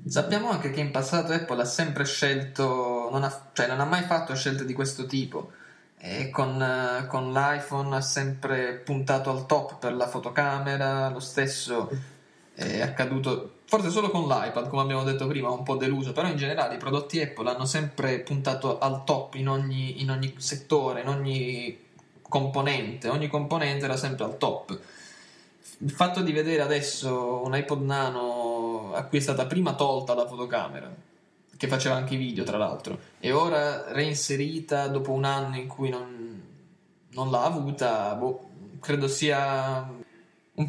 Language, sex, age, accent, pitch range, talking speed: Italian, male, 20-39, native, 130-145 Hz, 160 wpm